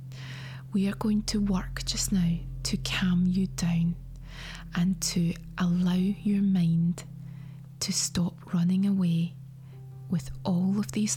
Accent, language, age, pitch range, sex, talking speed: British, English, 20-39, 150-195 Hz, female, 130 wpm